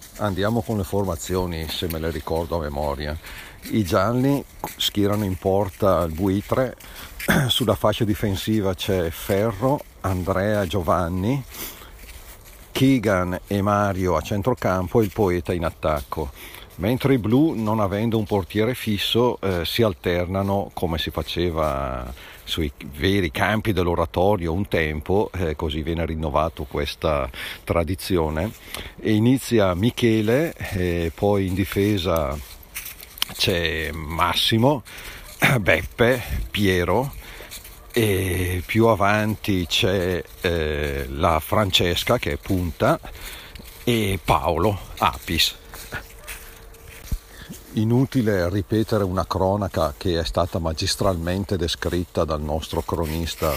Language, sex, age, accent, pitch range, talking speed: Italian, male, 50-69, native, 85-110 Hz, 110 wpm